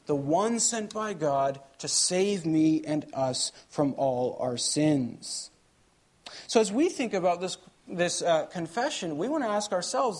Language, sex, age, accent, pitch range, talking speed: English, male, 40-59, American, 150-205 Hz, 165 wpm